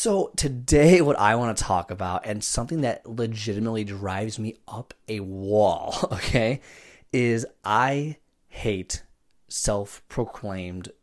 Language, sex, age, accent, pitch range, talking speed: English, male, 30-49, American, 105-135 Hz, 120 wpm